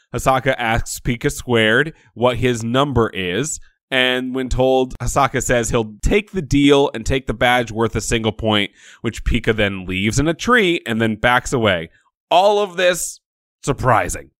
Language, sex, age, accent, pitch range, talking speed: English, male, 20-39, American, 110-145 Hz, 165 wpm